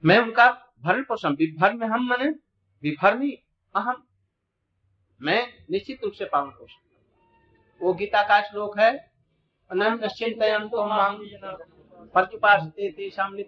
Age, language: 50-69, Hindi